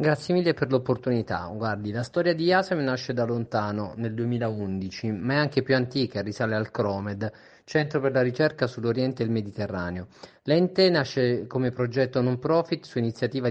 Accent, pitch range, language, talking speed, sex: Italian, 110-140 Hz, Spanish, 170 wpm, male